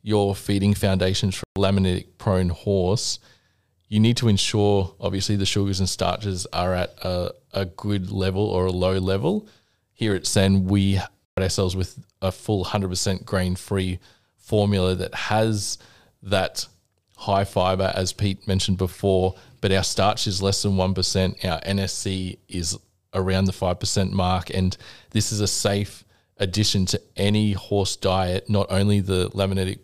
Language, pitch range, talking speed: English, 95-110 Hz, 155 wpm